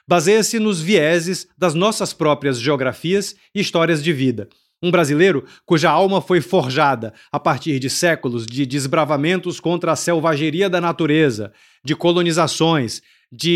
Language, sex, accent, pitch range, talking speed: Portuguese, male, Brazilian, 150-200 Hz, 135 wpm